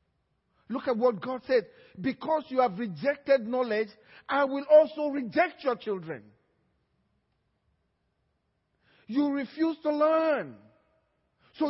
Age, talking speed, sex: 50-69, 110 wpm, male